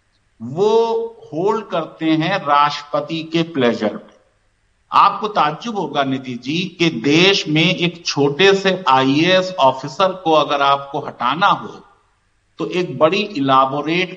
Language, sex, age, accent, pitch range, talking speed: Hindi, male, 50-69, native, 135-175 Hz, 125 wpm